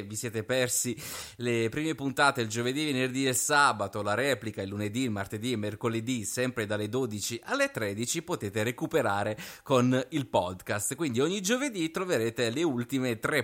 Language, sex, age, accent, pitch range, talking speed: Italian, male, 30-49, native, 105-140 Hz, 160 wpm